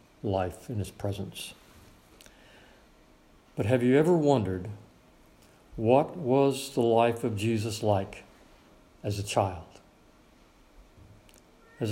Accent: American